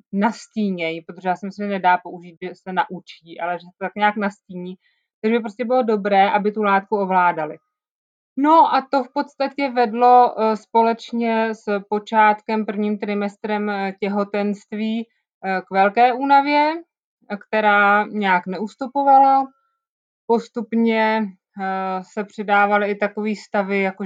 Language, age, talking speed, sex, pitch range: Czech, 20-39, 125 wpm, female, 195-225 Hz